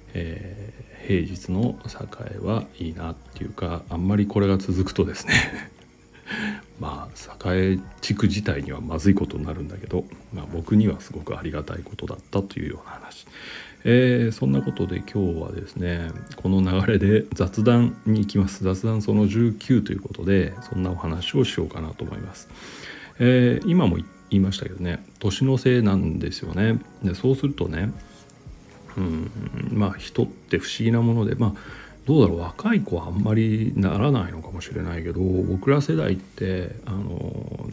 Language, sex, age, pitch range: Japanese, male, 40-59, 90-110 Hz